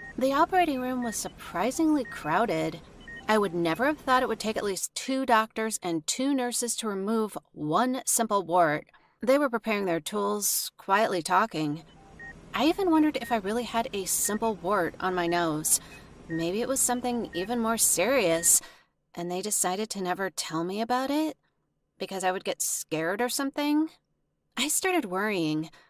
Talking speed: 165 wpm